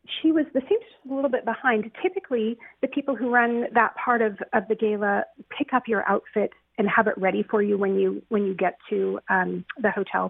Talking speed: 225 wpm